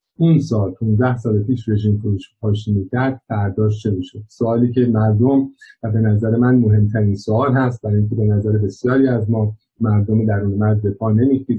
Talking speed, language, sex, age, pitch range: 185 wpm, Persian, male, 50-69, 105-130 Hz